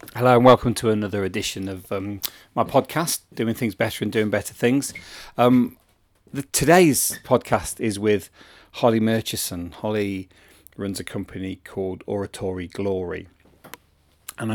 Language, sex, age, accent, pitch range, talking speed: English, male, 40-59, British, 95-110 Hz, 130 wpm